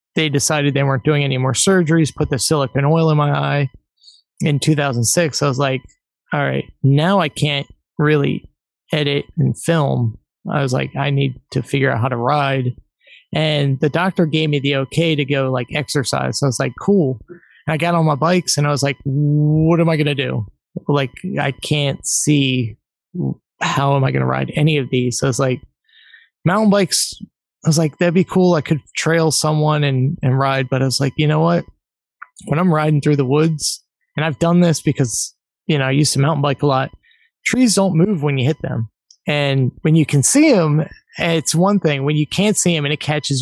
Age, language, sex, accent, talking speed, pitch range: 20-39, English, male, American, 215 wpm, 135-165 Hz